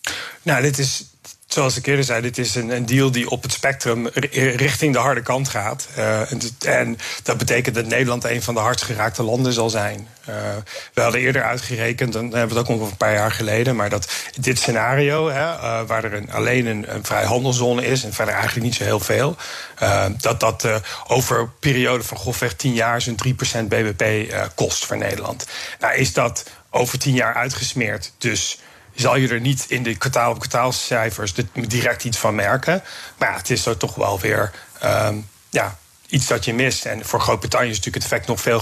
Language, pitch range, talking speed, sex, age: Dutch, 110-125 Hz, 210 wpm, male, 40-59